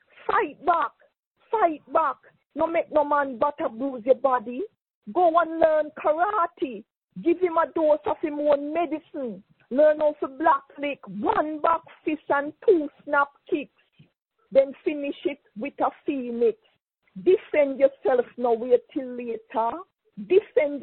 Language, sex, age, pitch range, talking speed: English, female, 40-59, 245-315 Hz, 140 wpm